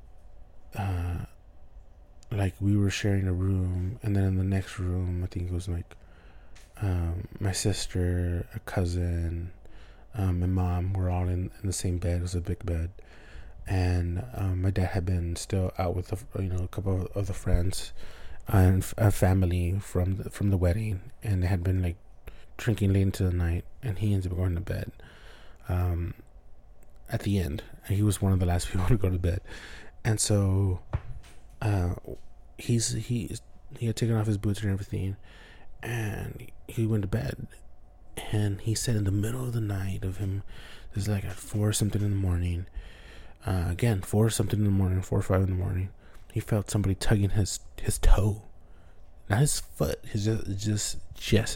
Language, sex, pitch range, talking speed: English, male, 90-105 Hz, 190 wpm